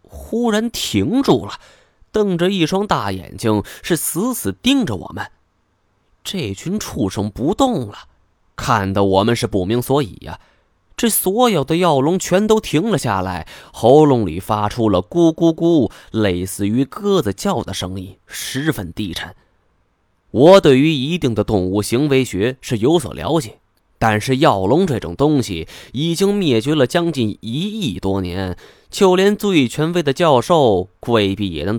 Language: Chinese